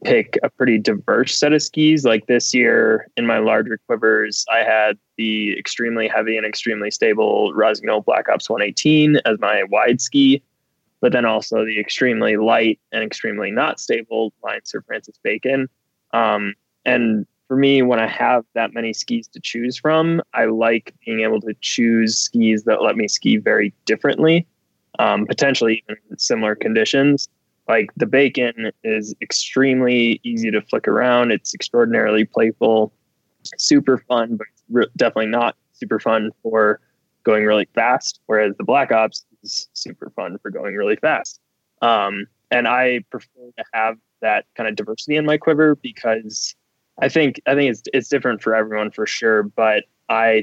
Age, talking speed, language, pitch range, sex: 20-39, 165 wpm, English, 110-135 Hz, male